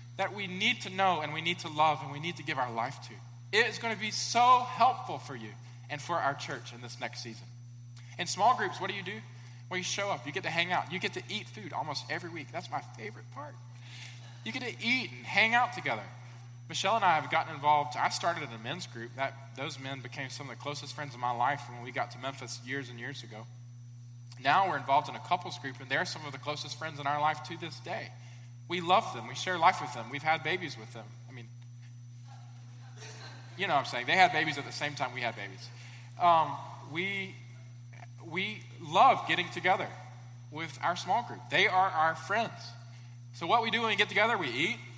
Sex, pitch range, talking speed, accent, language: male, 120-160 Hz, 235 wpm, American, English